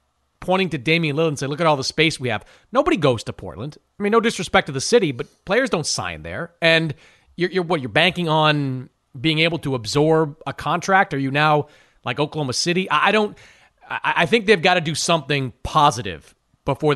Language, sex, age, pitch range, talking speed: English, male, 30-49, 145-185 Hz, 210 wpm